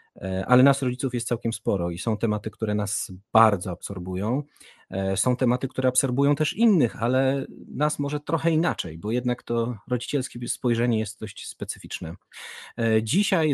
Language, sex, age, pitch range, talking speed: Polish, male, 30-49, 105-130 Hz, 145 wpm